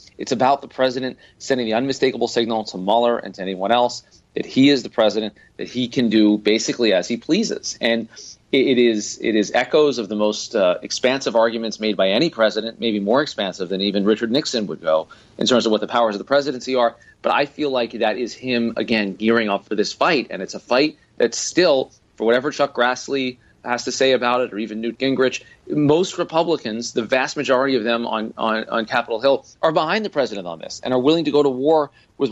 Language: English